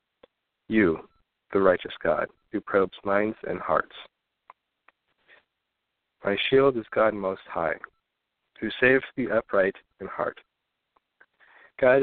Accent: American